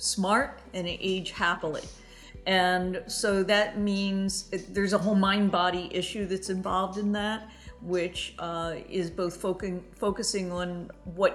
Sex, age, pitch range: female, 50-69, 175-205 Hz